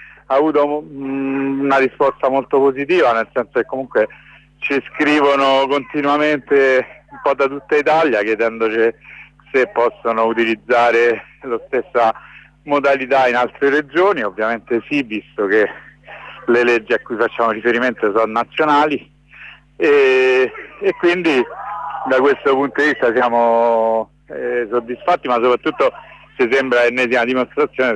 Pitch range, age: 120-145 Hz, 50-69